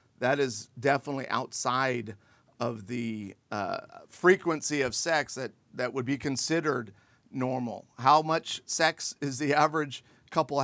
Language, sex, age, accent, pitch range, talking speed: English, male, 50-69, American, 125-160 Hz, 130 wpm